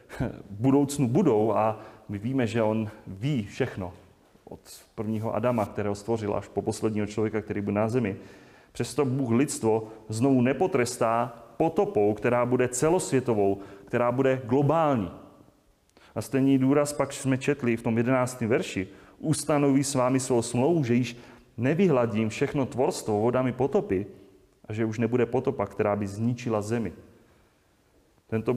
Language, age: Czech, 30-49